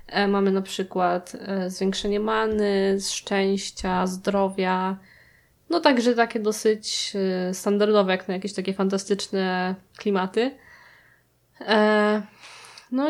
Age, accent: 20-39, native